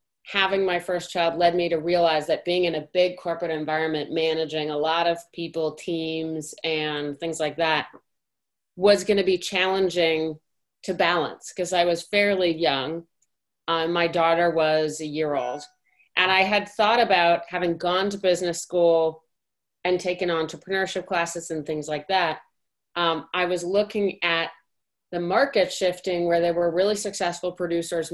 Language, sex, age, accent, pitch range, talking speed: English, female, 30-49, American, 155-180 Hz, 160 wpm